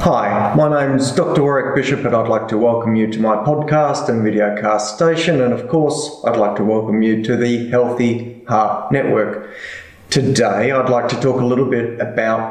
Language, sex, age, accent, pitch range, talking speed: English, male, 30-49, Australian, 115-135 Hz, 195 wpm